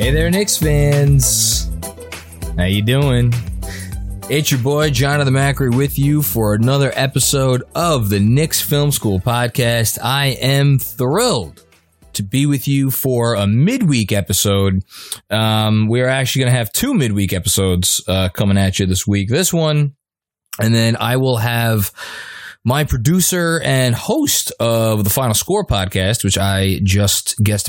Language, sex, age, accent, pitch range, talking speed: English, male, 20-39, American, 100-135 Hz, 155 wpm